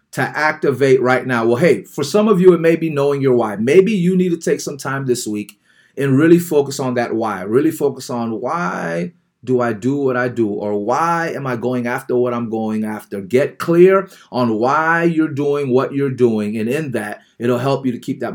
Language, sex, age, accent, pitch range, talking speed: English, male, 30-49, American, 125-165 Hz, 225 wpm